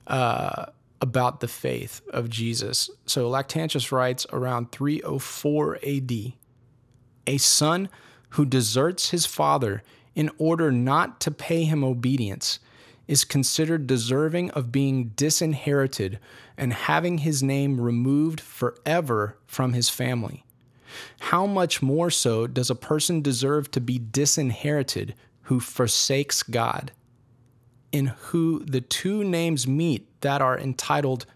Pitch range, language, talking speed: 120-145 Hz, English, 120 wpm